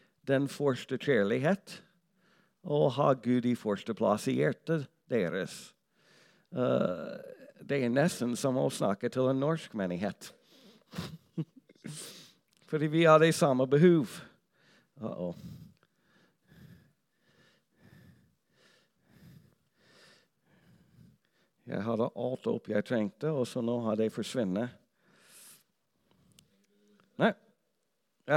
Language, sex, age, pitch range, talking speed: English, male, 60-79, 135-170 Hz, 90 wpm